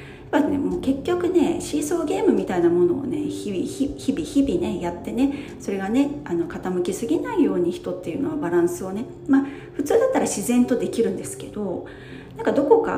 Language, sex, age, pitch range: Japanese, female, 40-59, 200-310 Hz